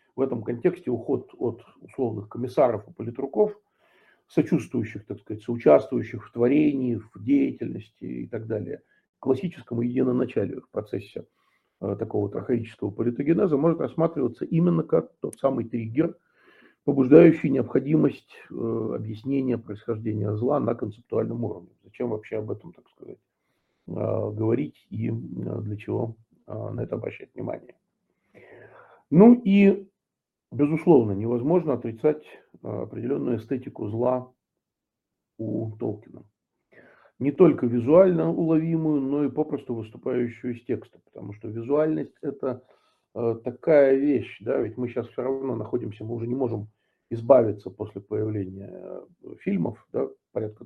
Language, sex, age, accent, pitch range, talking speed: Russian, male, 50-69, native, 115-145 Hz, 120 wpm